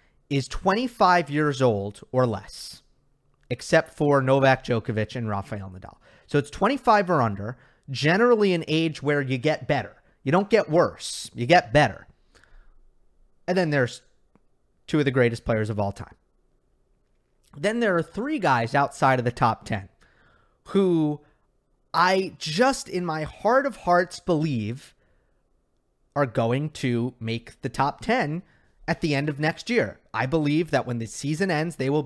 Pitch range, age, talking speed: 115-175 Hz, 30-49, 155 wpm